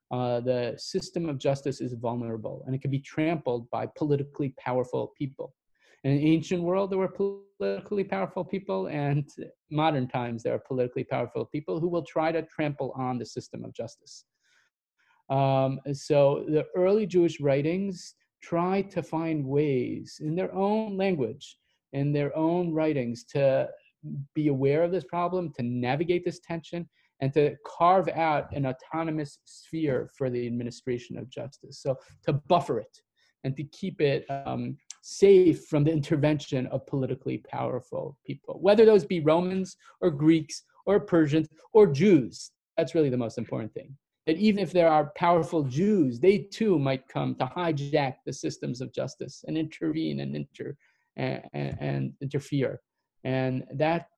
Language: English